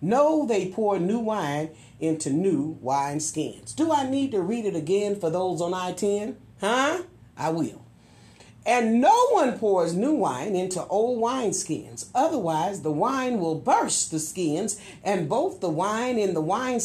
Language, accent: English, American